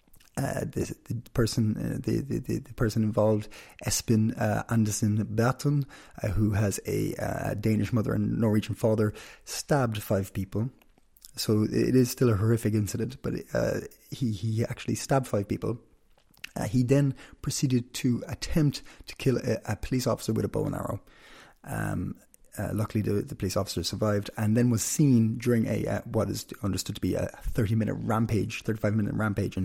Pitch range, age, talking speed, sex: 105-120 Hz, 20-39, 180 wpm, male